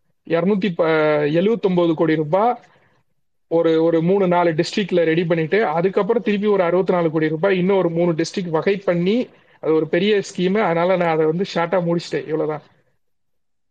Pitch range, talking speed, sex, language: 160-185 Hz, 155 wpm, male, Tamil